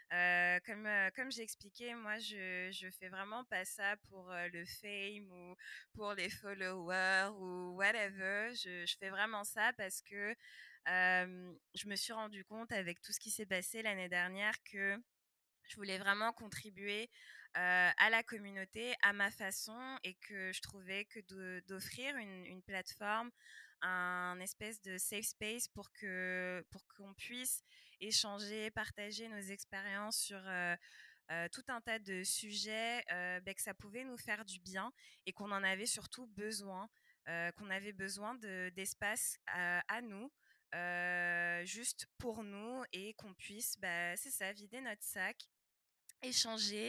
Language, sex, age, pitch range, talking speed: French, female, 20-39, 185-220 Hz, 165 wpm